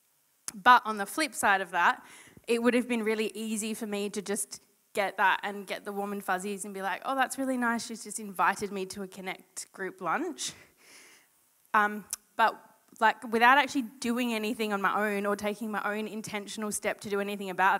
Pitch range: 205-240 Hz